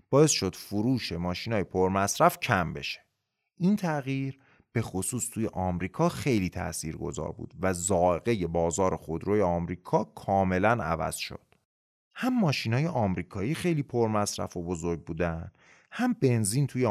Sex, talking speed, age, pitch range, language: male, 140 wpm, 30-49, 90-145 Hz, Persian